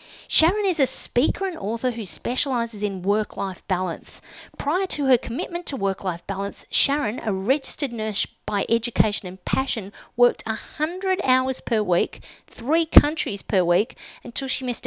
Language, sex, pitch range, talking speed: English, female, 200-265 Hz, 155 wpm